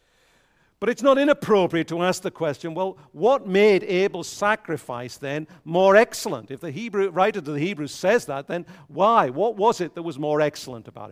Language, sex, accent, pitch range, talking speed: English, male, British, 110-175 Hz, 190 wpm